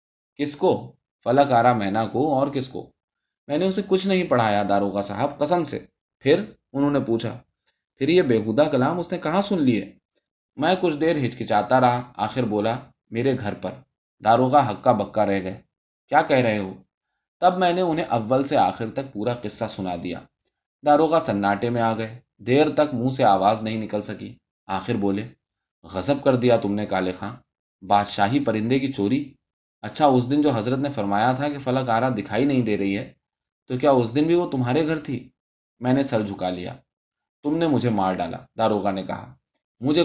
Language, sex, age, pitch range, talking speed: Urdu, male, 20-39, 105-145 Hz, 195 wpm